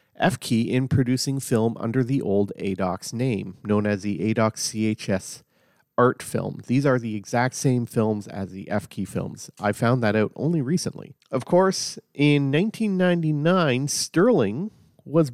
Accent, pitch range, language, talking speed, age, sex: American, 105-140 Hz, English, 150 wpm, 40-59, male